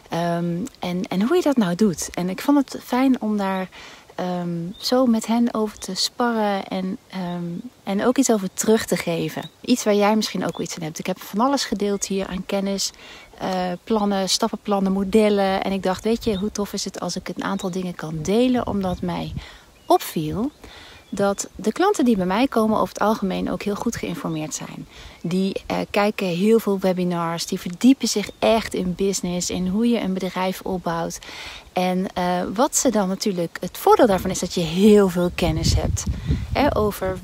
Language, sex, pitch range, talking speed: Dutch, female, 185-230 Hz, 190 wpm